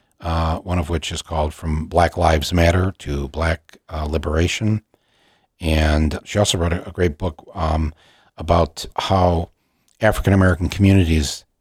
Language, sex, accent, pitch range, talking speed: English, male, American, 80-95 Hz, 140 wpm